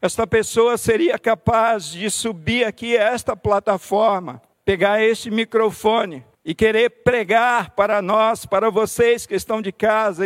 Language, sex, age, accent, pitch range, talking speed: Portuguese, male, 50-69, Brazilian, 210-235 Hz, 140 wpm